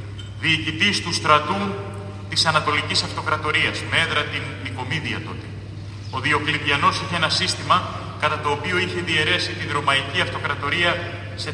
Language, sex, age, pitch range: Greek, male, 30-49, 100-130 Hz